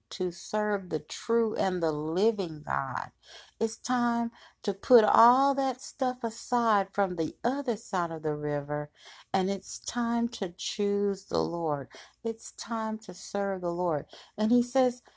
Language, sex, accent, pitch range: English, female, American, 175-230 Hz